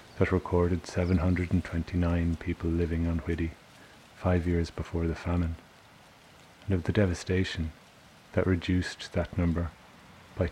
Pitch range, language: 85-95 Hz, English